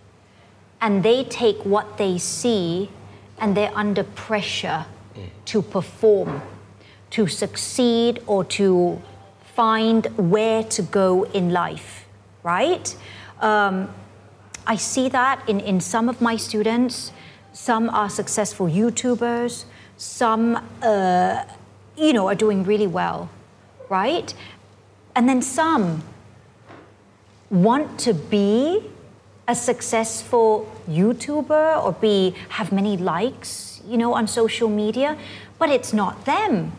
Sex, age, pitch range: female, 40-59, 160-235 Hz